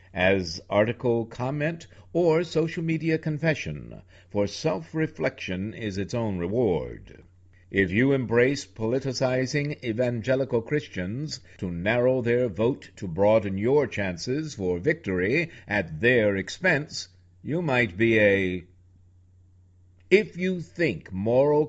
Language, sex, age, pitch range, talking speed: English, male, 60-79, 95-140 Hz, 110 wpm